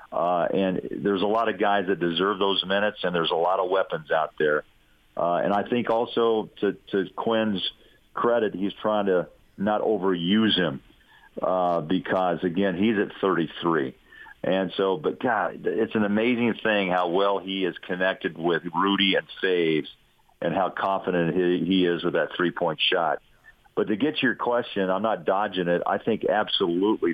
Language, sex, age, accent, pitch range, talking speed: English, male, 50-69, American, 90-105 Hz, 180 wpm